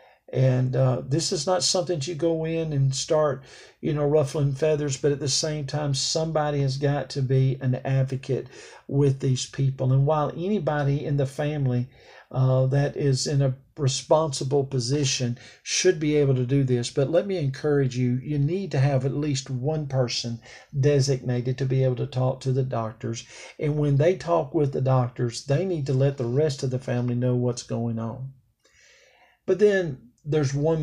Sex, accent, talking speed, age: male, American, 185 wpm, 50-69